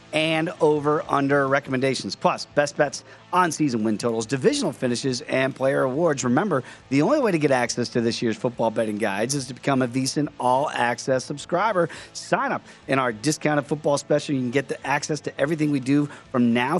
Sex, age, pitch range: male, 40-59, 120-150 Hz